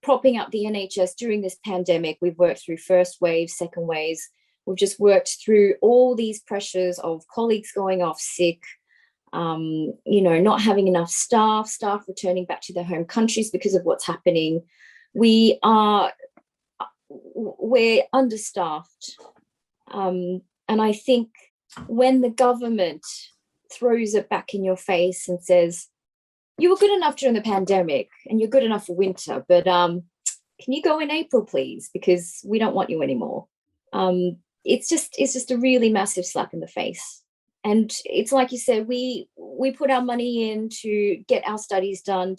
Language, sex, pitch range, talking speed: English, female, 180-240 Hz, 165 wpm